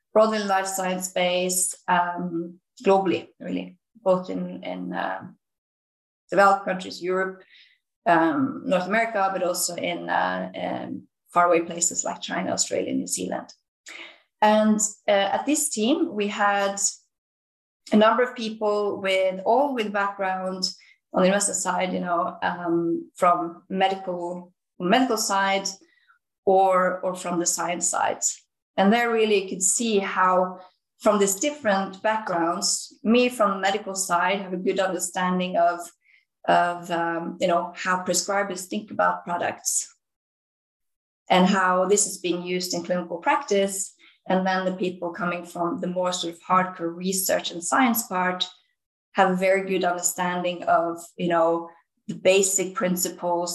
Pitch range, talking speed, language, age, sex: 175-200 Hz, 135 wpm, English, 30-49, female